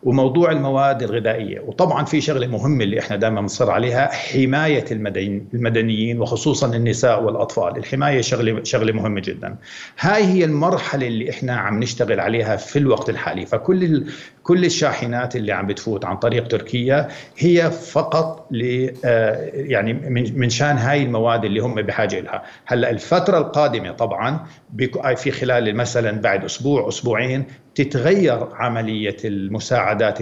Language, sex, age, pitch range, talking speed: Arabic, male, 50-69, 115-145 Hz, 135 wpm